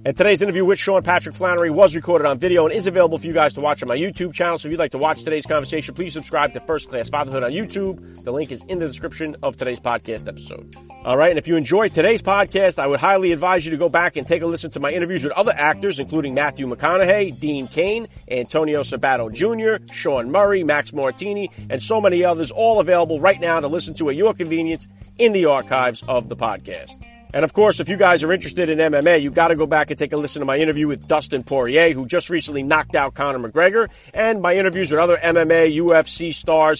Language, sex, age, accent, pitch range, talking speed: English, male, 40-59, American, 140-175 Hz, 240 wpm